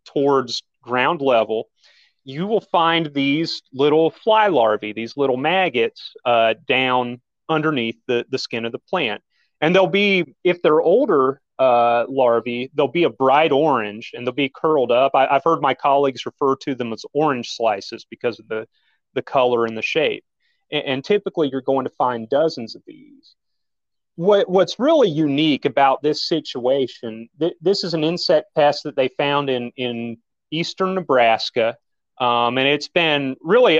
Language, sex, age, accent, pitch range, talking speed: English, male, 30-49, American, 120-165 Hz, 165 wpm